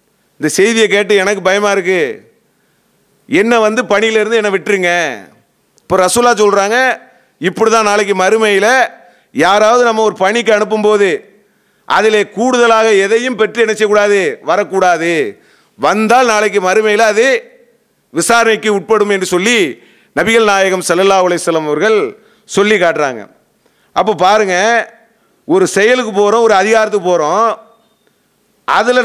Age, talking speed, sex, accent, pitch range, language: 40-59, 105 wpm, male, Indian, 195-225 Hz, English